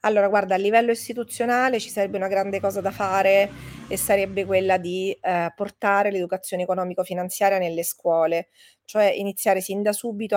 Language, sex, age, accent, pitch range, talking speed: Italian, female, 30-49, native, 195-230 Hz, 155 wpm